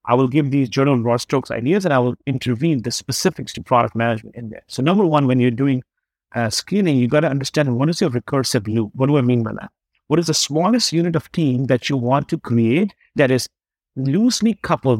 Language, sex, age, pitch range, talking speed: English, male, 50-69, 120-155 Hz, 230 wpm